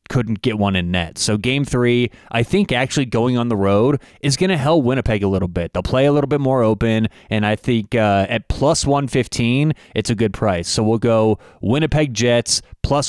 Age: 30-49